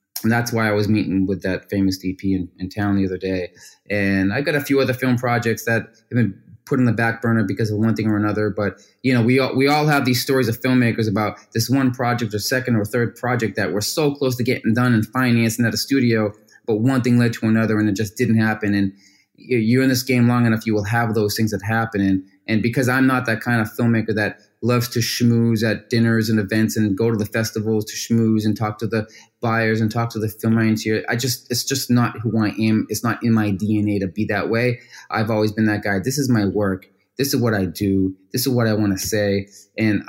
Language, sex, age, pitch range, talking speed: English, male, 20-39, 105-120 Hz, 255 wpm